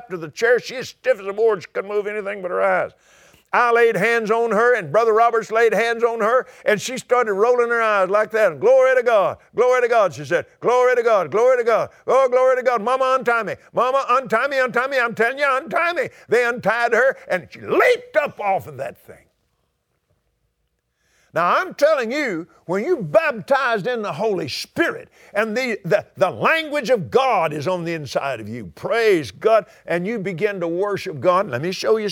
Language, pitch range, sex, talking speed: English, 185-255 Hz, male, 210 wpm